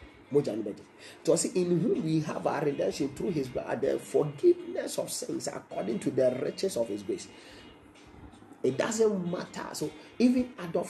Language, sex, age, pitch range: Japanese, male, 30-49, 130-180 Hz